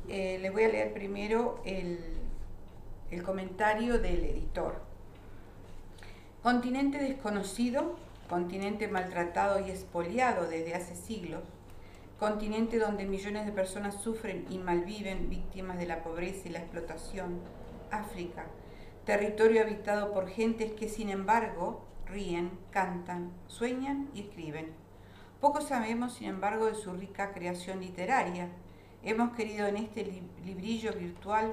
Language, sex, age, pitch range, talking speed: Spanish, female, 50-69, 175-220 Hz, 120 wpm